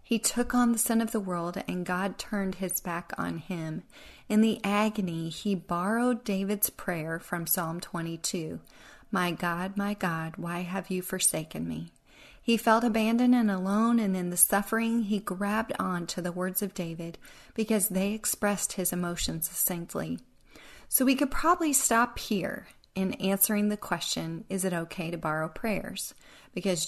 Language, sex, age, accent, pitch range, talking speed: English, female, 40-59, American, 170-220 Hz, 165 wpm